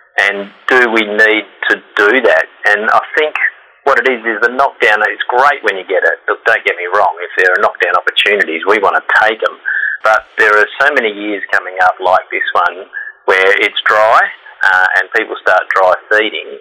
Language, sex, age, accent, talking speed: English, male, 30-49, Australian, 205 wpm